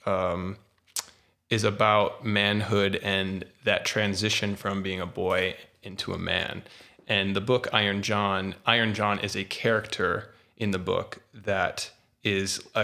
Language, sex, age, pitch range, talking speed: English, male, 20-39, 100-110 Hz, 135 wpm